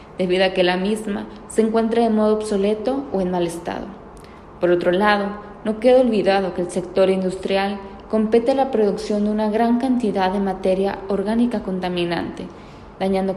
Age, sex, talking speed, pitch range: 20-39, female, 170 wpm, 190-225 Hz